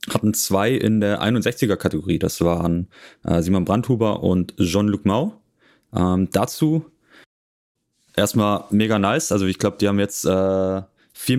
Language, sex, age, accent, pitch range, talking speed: German, male, 30-49, German, 90-115 Hz, 135 wpm